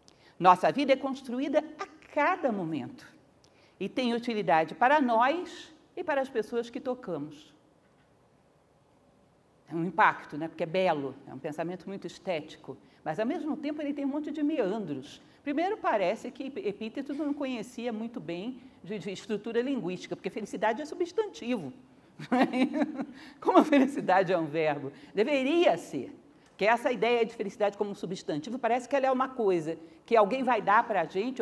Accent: Brazilian